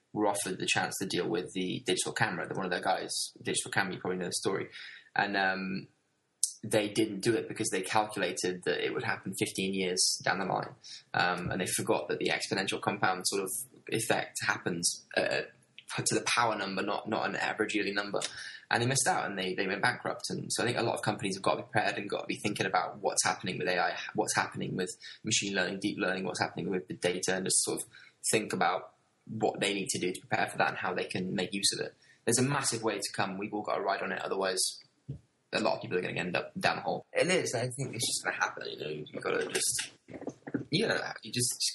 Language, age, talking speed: English, 10-29, 250 wpm